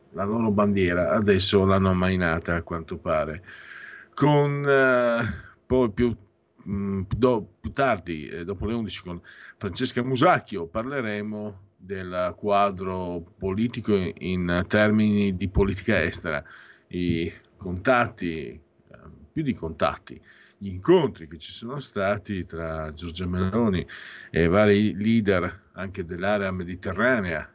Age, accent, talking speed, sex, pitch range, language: 50-69, native, 120 wpm, male, 85-105 Hz, Italian